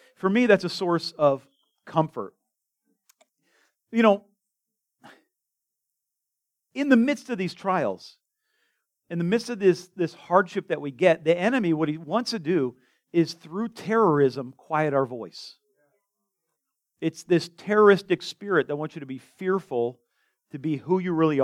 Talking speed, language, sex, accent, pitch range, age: 150 wpm, English, male, American, 150-195 Hz, 40-59